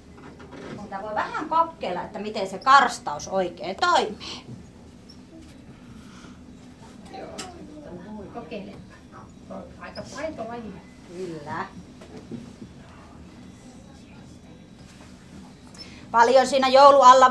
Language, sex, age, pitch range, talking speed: Finnish, female, 30-49, 195-290 Hz, 50 wpm